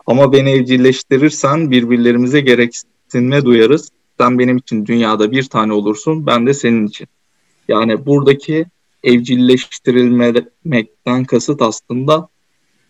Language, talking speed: Turkish, 100 wpm